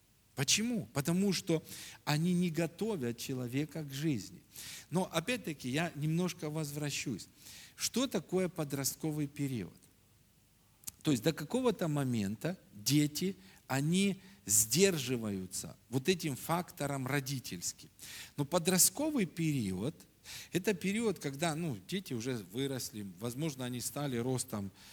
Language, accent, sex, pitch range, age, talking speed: Russian, native, male, 110-165 Hz, 50-69, 105 wpm